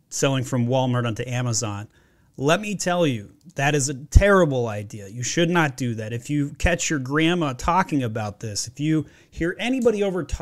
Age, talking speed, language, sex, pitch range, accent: 30-49, 185 wpm, English, male, 125-160 Hz, American